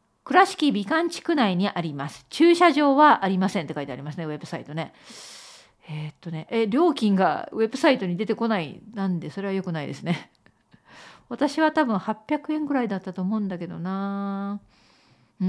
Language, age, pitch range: Japanese, 50-69, 185-295 Hz